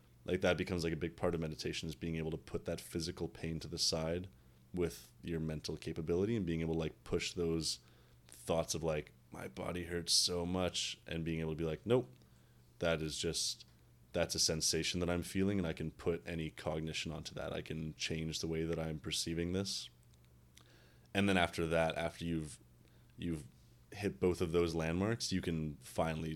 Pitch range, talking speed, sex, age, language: 75-85 Hz, 200 wpm, male, 20-39, English